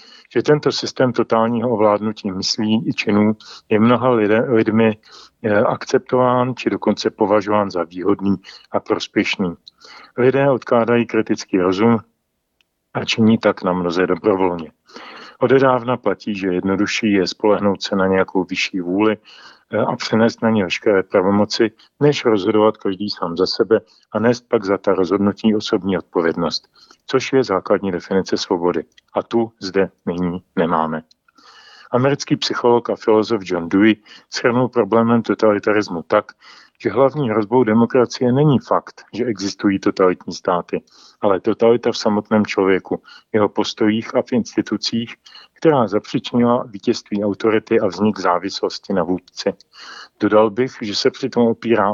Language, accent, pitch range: Czech, native, 100-120 Hz